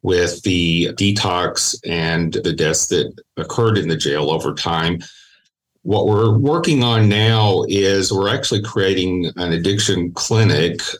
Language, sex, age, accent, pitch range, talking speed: English, male, 40-59, American, 85-100 Hz, 135 wpm